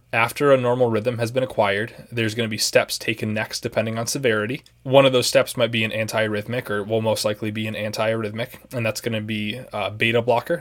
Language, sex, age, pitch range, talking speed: English, male, 20-39, 105-120 Hz, 225 wpm